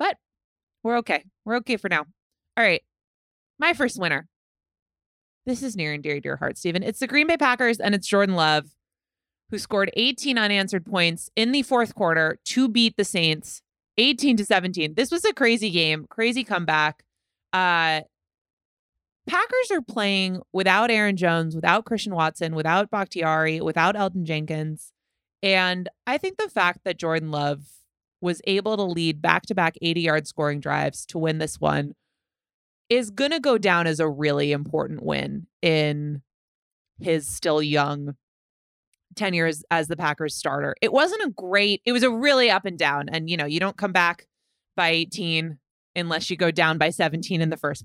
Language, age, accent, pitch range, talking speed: English, 20-39, American, 155-215 Hz, 170 wpm